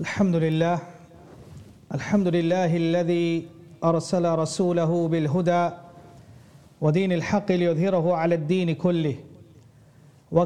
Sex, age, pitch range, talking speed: male, 40-59, 160-185 Hz, 85 wpm